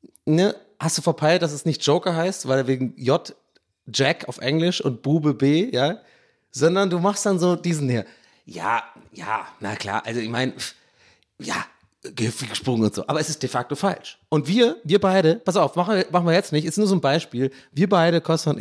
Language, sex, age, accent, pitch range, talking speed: German, male, 30-49, German, 135-190 Hz, 205 wpm